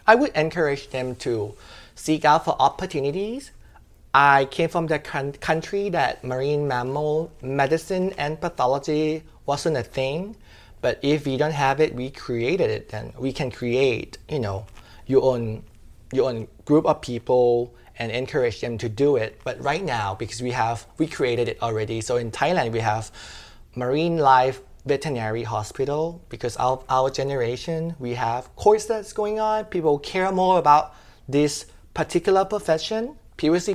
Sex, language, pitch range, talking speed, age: male, English, 120-160 Hz, 155 wpm, 30-49